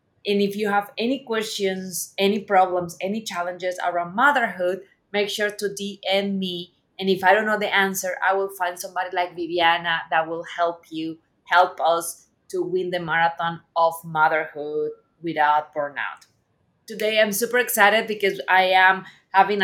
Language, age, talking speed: English, 30-49, 160 wpm